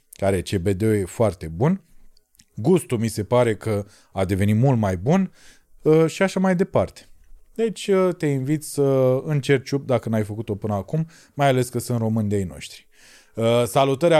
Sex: male